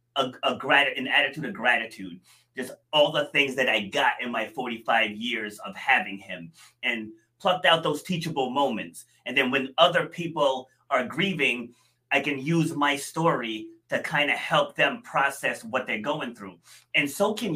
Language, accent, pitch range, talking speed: English, American, 120-165 Hz, 180 wpm